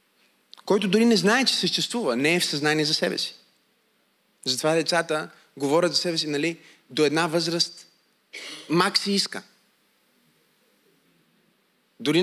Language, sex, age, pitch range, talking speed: Bulgarian, male, 30-49, 175-225 Hz, 130 wpm